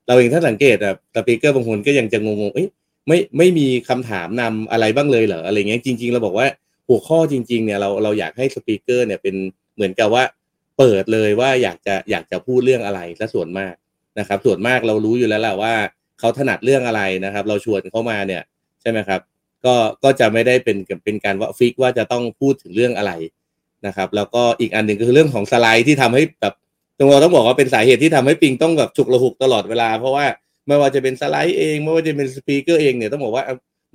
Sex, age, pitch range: male, 30-49, 110-140 Hz